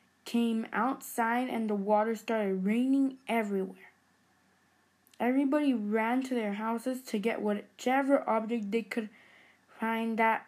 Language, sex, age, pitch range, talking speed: English, female, 10-29, 220-265 Hz, 120 wpm